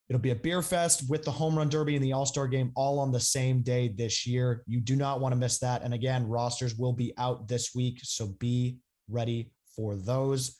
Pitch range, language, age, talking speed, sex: 125-150 Hz, English, 20-39, 240 wpm, male